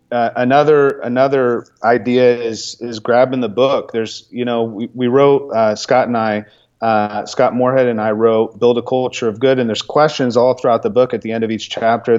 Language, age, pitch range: English, 30-49, 110-135 Hz